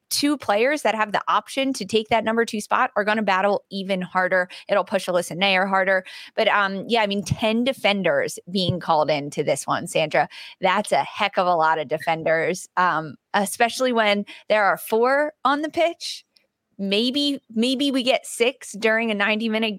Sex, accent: female, American